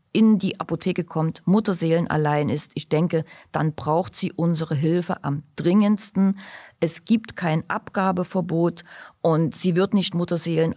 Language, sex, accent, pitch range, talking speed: German, female, German, 150-175 Hz, 140 wpm